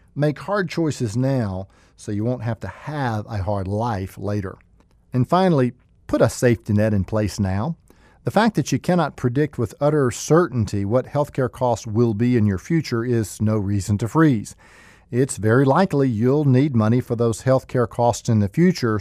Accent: American